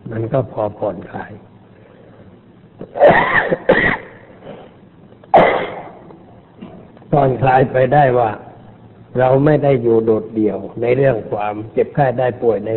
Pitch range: 110-145 Hz